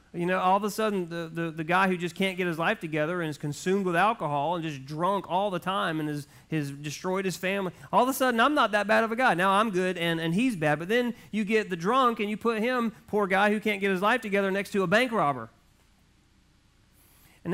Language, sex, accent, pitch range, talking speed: English, male, American, 160-215 Hz, 255 wpm